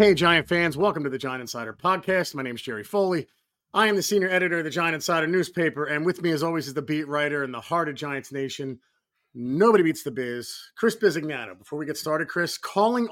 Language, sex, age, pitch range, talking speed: English, male, 30-49, 145-185 Hz, 235 wpm